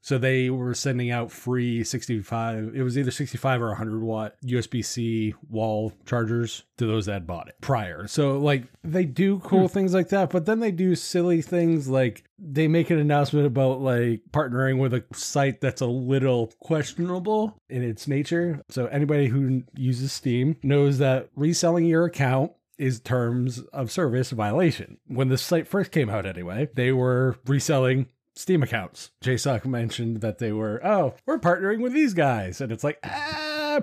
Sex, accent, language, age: male, American, English, 30-49